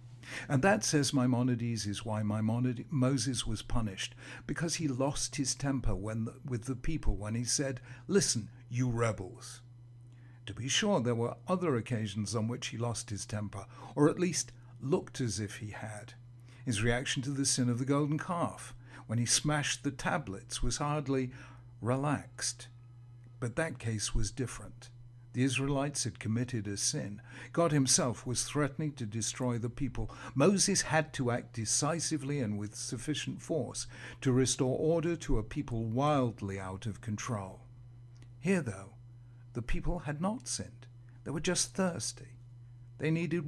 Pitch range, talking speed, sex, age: 120-140 Hz, 155 wpm, male, 60-79